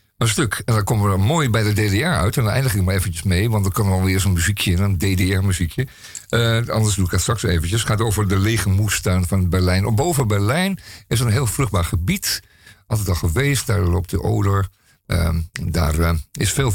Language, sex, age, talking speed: Dutch, male, 50-69, 230 wpm